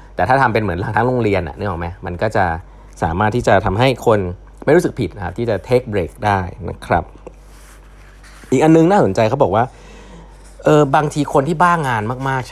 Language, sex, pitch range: Thai, male, 95-135 Hz